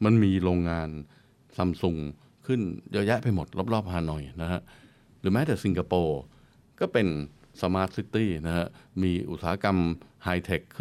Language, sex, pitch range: Thai, male, 85-110 Hz